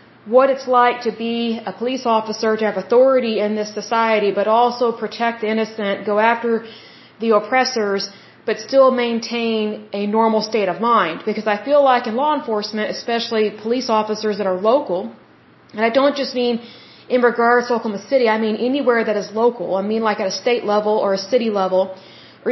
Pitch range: 210-245 Hz